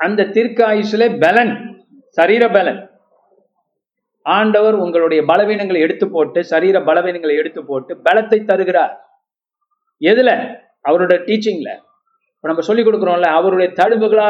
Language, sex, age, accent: Tamil, male, 50-69, native